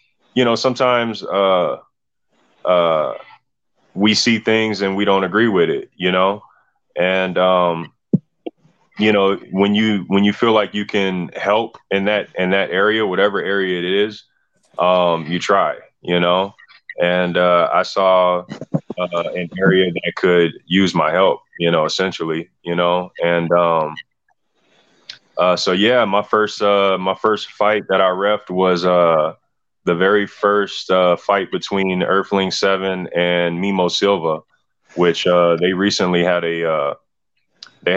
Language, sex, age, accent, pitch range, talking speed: English, male, 20-39, American, 90-100 Hz, 150 wpm